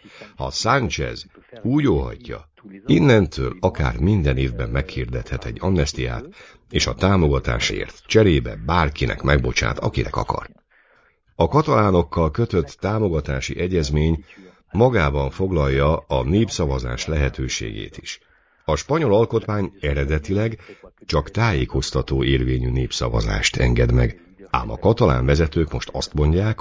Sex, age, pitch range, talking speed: male, 60-79, 65-90 Hz, 105 wpm